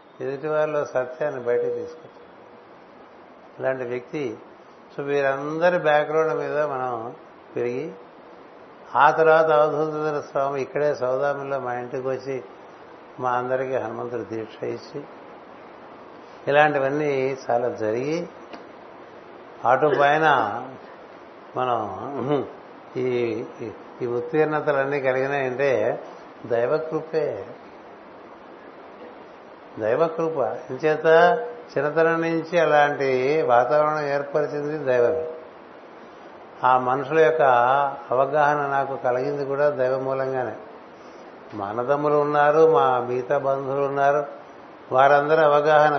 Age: 60-79